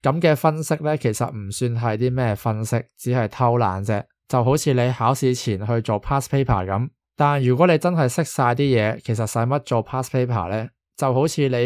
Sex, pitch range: male, 115-140 Hz